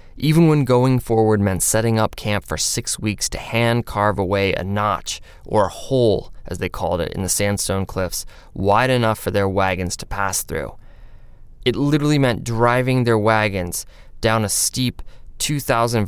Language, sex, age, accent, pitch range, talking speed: English, male, 20-39, American, 100-120 Hz, 170 wpm